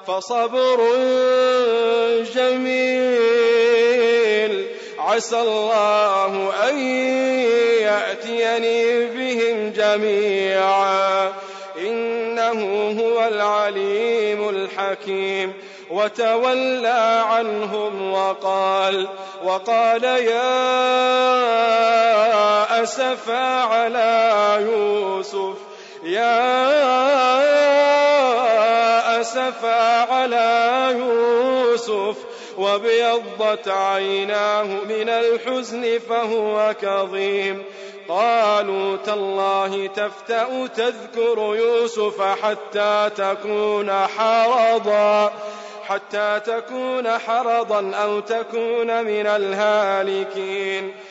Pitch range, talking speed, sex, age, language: 205-245 Hz, 55 wpm, male, 30-49, Arabic